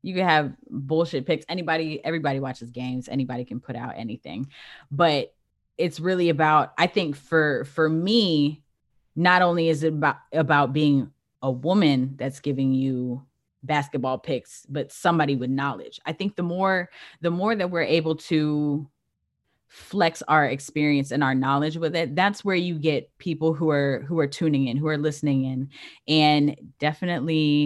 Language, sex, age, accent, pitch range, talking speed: English, female, 10-29, American, 140-165 Hz, 165 wpm